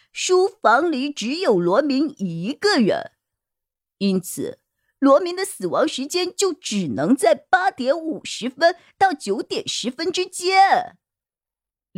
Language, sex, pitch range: Chinese, female, 230-335 Hz